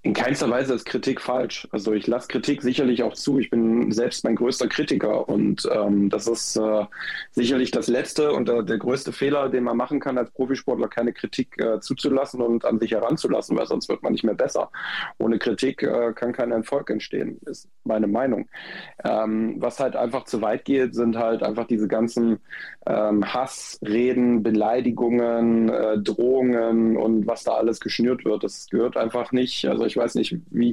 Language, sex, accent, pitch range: German, male, German, 110-125 Hz